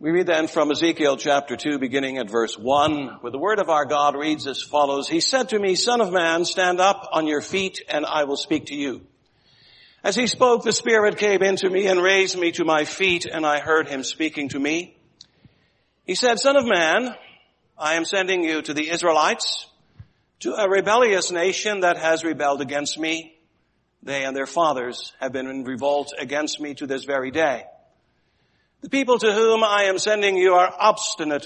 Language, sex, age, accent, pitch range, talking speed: English, male, 60-79, American, 145-200 Hz, 200 wpm